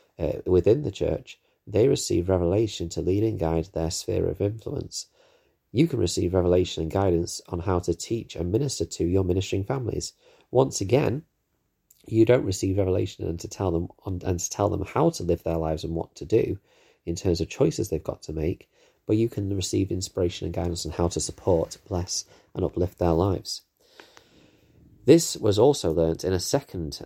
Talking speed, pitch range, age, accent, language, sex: 190 wpm, 85-100 Hz, 30-49, British, English, male